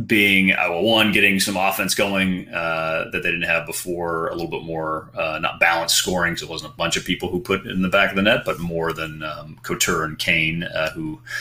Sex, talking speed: male, 240 wpm